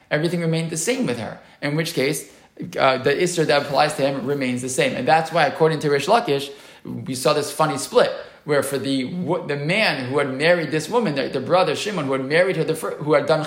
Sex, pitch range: male, 135-185 Hz